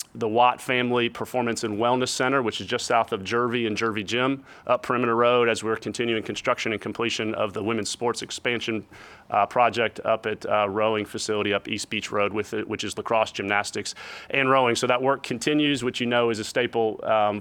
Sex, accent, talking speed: male, American, 205 wpm